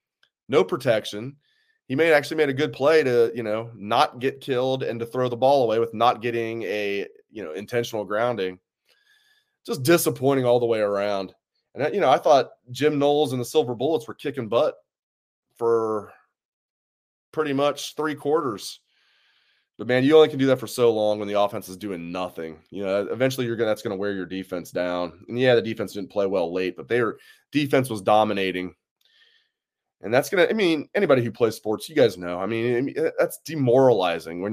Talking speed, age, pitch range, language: 200 wpm, 20-39, 105-150 Hz, English